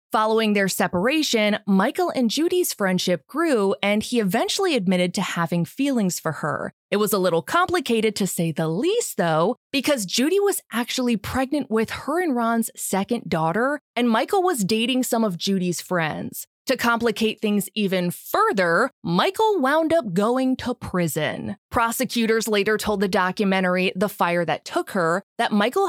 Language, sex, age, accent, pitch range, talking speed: English, female, 20-39, American, 185-255 Hz, 160 wpm